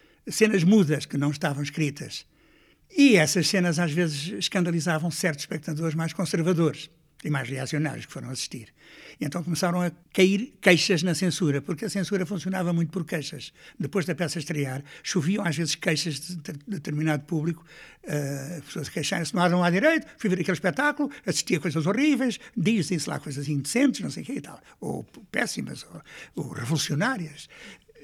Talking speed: 170 wpm